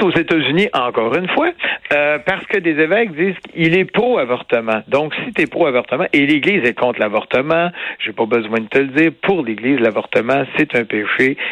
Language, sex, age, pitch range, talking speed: French, male, 60-79, 125-195 Hz, 195 wpm